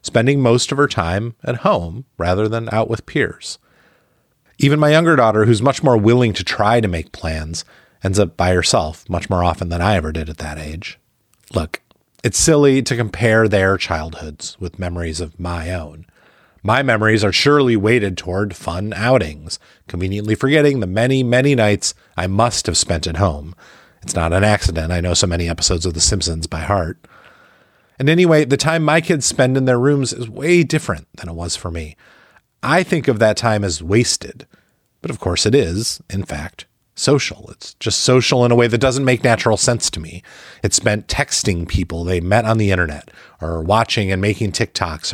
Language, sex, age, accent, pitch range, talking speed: English, male, 30-49, American, 90-125 Hz, 195 wpm